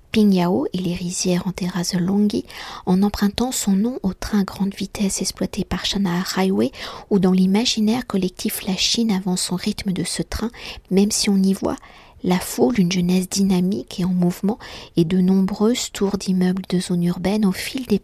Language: French